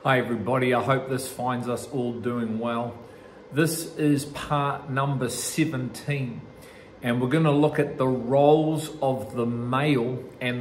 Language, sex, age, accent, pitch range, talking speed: English, male, 40-59, Australian, 125-150 Hz, 155 wpm